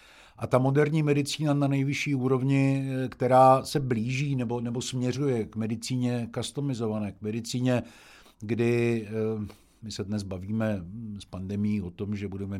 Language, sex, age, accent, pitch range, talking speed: Czech, male, 50-69, native, 95-110 Hz, 140 wpm